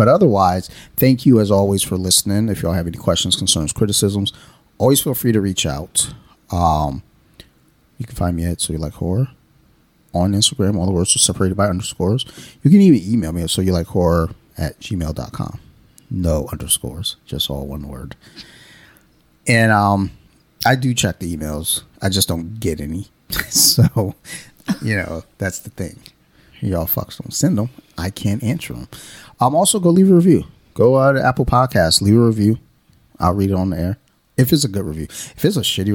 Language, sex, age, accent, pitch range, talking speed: English, male, 30-49, American, 85-110 Hz, 190 wpm